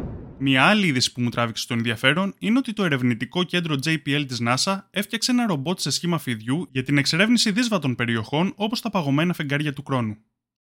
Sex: male